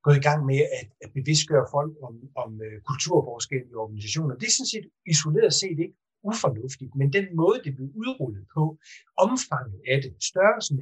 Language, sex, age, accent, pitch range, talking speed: Danish, male, 30-49, native, 130-165 Hz, 170 wpm